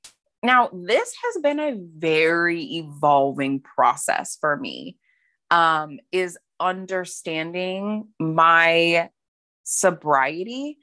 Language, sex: English, female